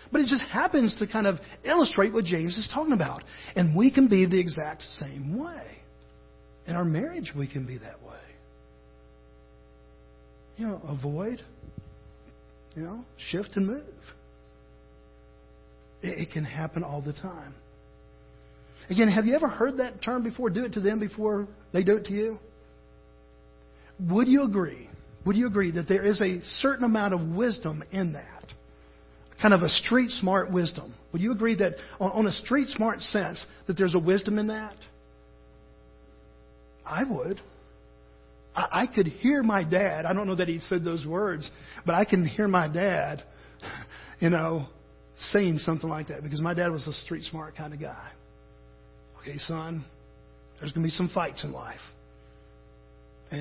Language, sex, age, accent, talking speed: English, male, 50-69, American, 165 wpm